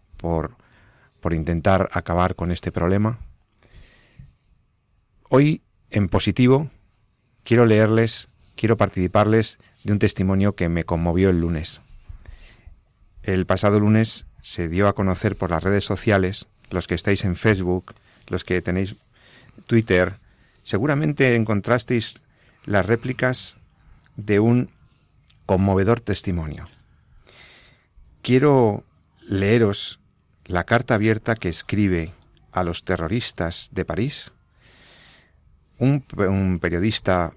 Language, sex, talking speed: Spanish, male, 105 wpm